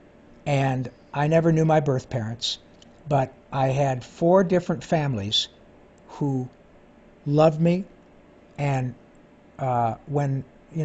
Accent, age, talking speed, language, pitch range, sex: American, 60-79, 110 wpm, English, 130-165 Hz, male